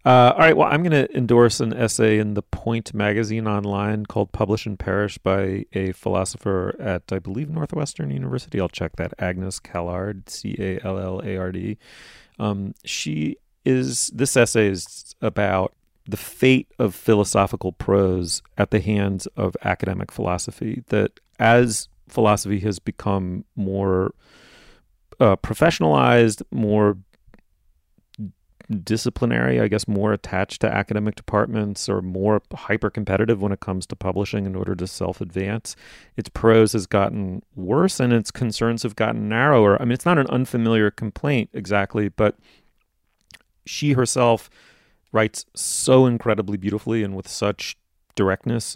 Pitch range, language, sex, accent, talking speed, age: 95-115 Hz, English, male, American, 135 wpm, 30-49